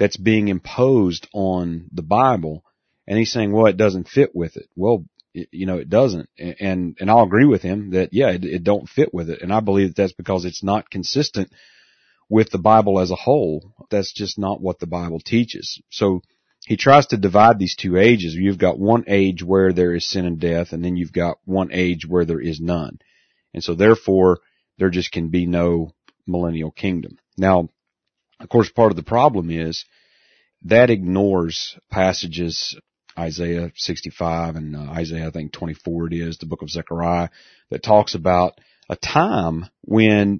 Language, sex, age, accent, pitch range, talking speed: English, male, 40-59, American, 85-105 Hz, 185 wpm